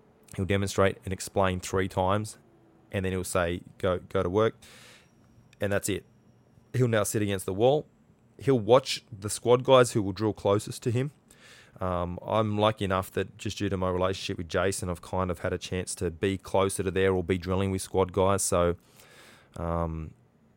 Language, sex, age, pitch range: English, male, 20-39, 90-105 Hz